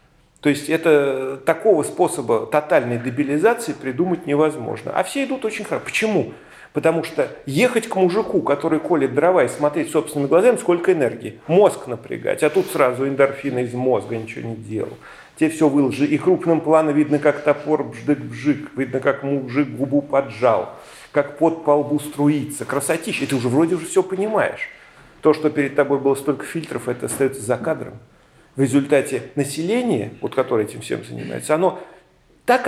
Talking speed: 160 wpm